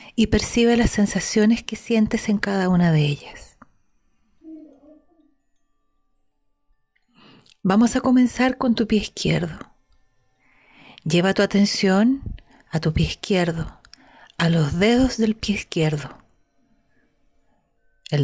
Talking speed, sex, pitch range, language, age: 105 wpm, female, 155-215 Hz, Spanish, 40-59